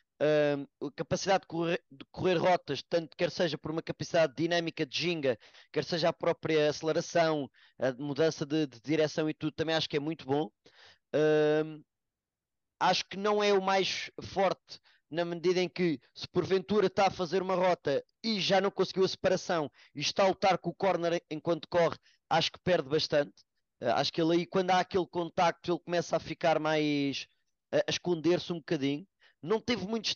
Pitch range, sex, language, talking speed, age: 150-180 Hz, male, English, 180 wpm, 20-39